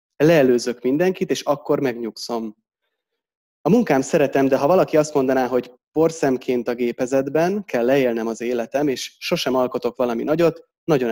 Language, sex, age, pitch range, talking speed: Hungarian, male, 30-49, 120-165 Hz, 145 wpm